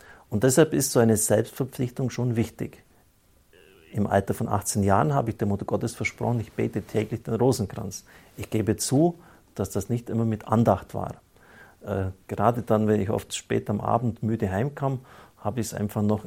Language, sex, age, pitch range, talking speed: German, male, 50-69, 100-115 Hz, 185 wpm